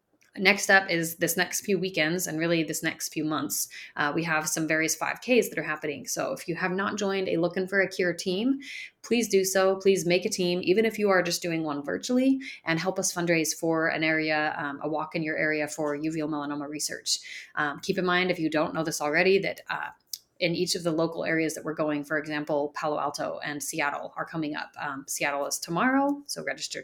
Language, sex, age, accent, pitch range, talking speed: English, female, 30-49, American, 155-185 Hz, 230 wpm